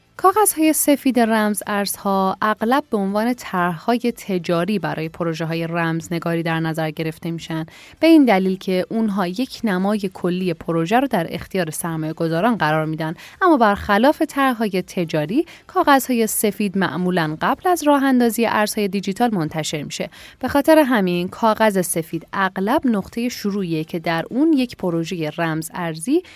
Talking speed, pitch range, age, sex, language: 150 wpm, 165-235 Hz, 10-29, female, Persian